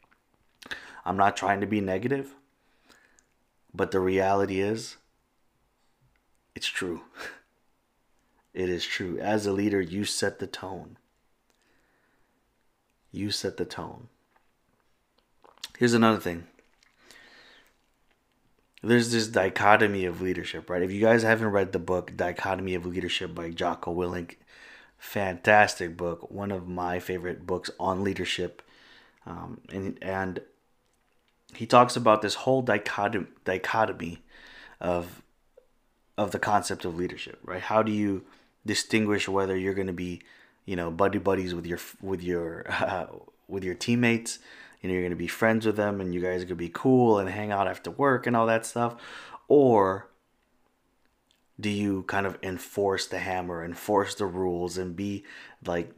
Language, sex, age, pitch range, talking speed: English, male, 30-49, 90-105 Hz, 145 wpm